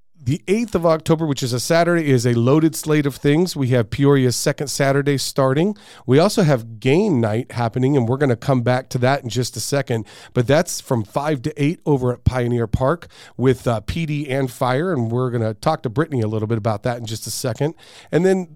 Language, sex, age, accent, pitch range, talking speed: English, male, 40-59, American, 115-150 Hz, 230 wpm